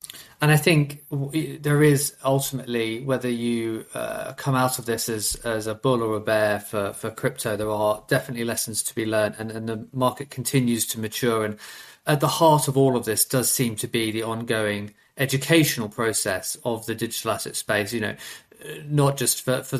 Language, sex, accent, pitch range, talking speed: English, male, British, 110-130 Hz, 195 wpm